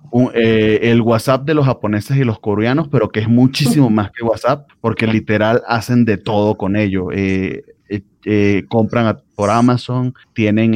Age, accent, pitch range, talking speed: 30-49, Venezuelan, 100-125 Hz, 175 wpm